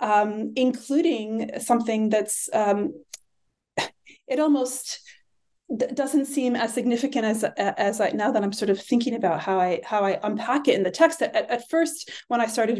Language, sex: English, female